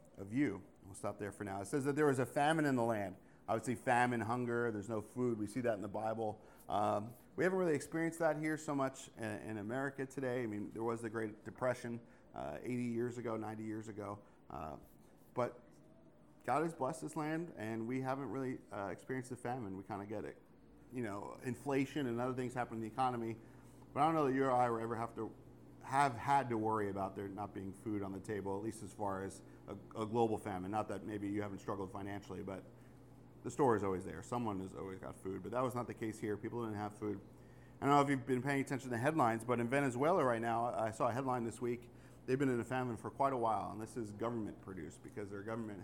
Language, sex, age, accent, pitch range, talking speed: English, male, 40-59, American, 105-130 Hz, 245 wpm